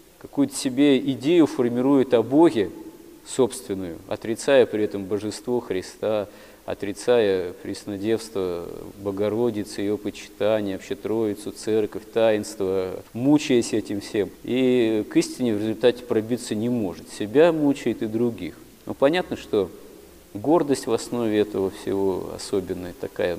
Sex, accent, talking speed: male, native, 115 wpm